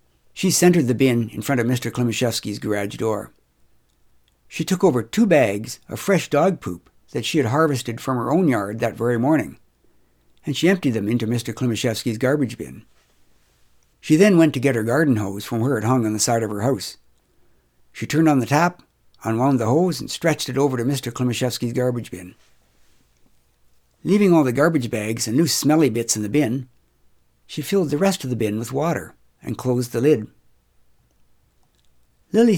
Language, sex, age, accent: English, male, 60-79, American